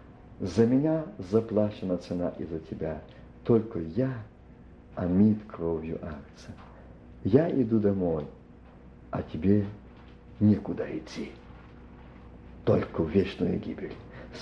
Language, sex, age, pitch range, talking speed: Russian, male, 50-69, 80-120 Hz, 95 wpm